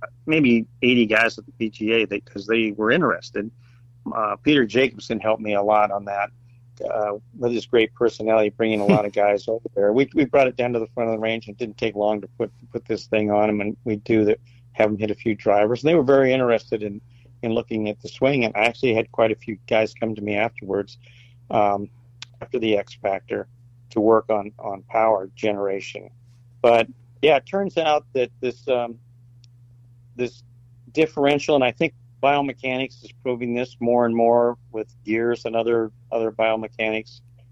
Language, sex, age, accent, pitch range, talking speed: English, male, 50-69, American, 110-120 Hz, 195 wpm